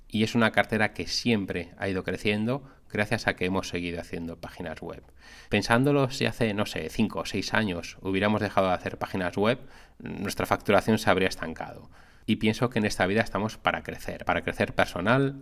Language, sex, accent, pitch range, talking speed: Spanish, male, Spanish, 90-115 Hz, 190 wpm